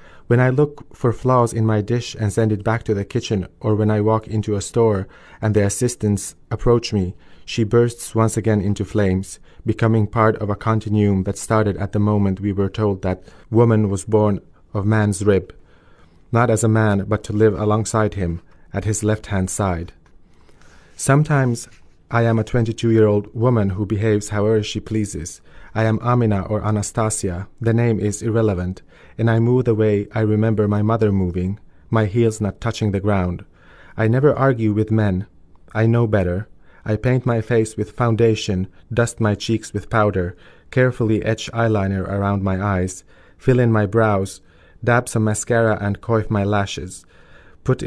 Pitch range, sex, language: 100-115 Hz, male, English